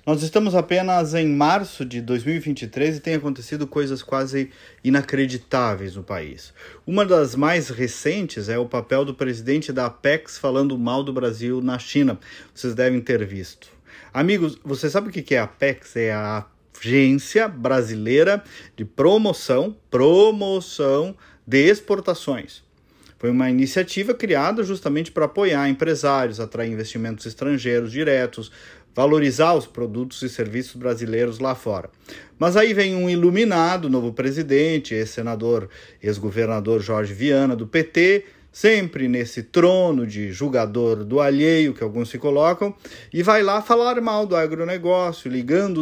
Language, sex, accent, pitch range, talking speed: Portuguese, male, Brazilian, 120-170 Hz, 140 wpm